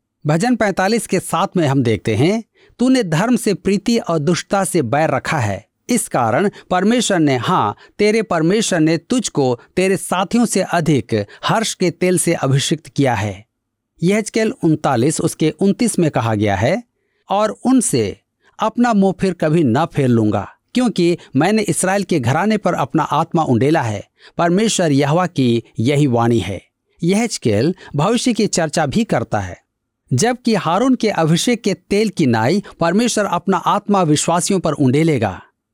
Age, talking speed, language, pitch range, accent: 50-69, 155 wpm, Hindi, 140-205 Hz, native